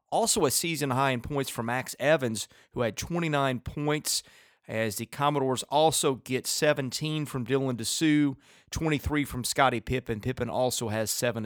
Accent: American